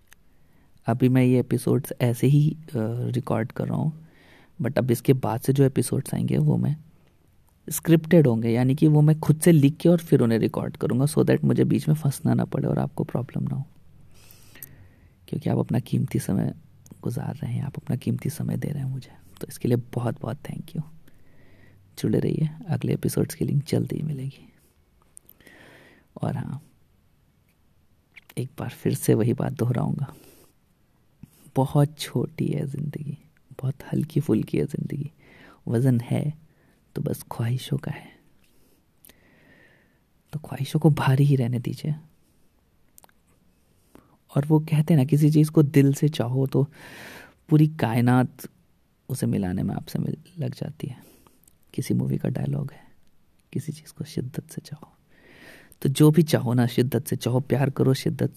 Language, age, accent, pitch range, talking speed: Hindi, 30-49, native, 120-155 Hz, 160 wpm